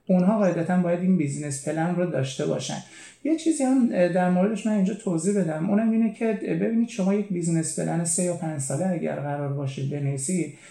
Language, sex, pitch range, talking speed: Persian, male, 150-185 Hz, 190 wpm